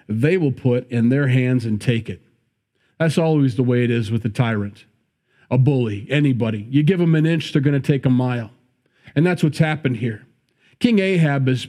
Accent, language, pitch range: American, English, 125-160 Hz